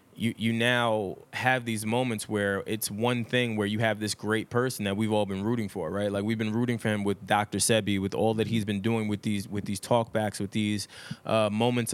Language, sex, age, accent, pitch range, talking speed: English, male, 20-39, American, 105-120 Hz, 235 wpm